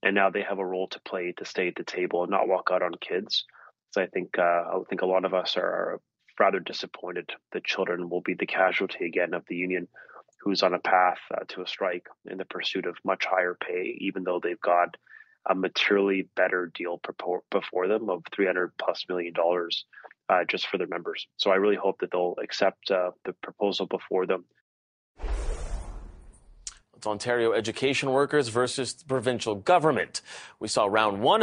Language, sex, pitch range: English, male, 90-130 Hz